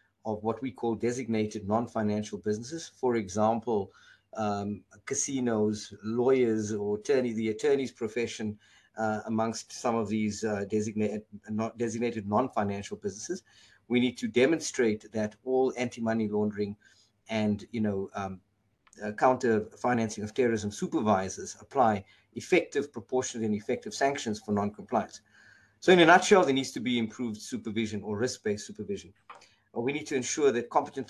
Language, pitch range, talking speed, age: English, 105-130 Hz, 135 wpm, 50-69